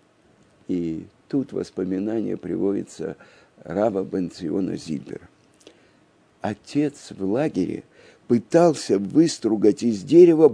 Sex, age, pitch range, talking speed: male, 50-69, 100-160 Hz, 80 wpm